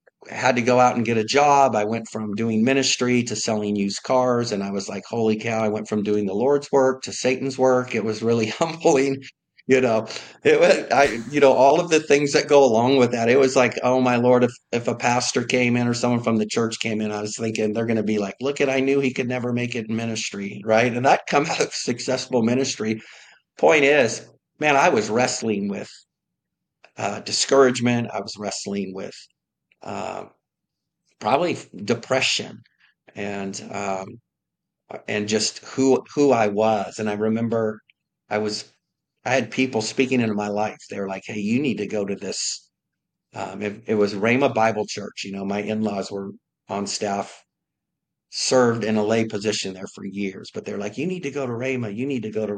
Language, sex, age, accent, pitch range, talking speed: English, male, 50-69, American, 105-125 Hz, 205 wpm